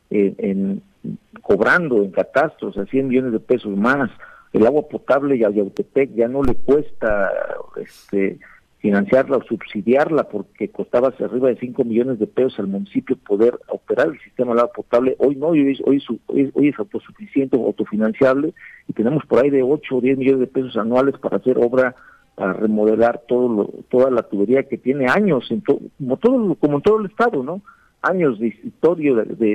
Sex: male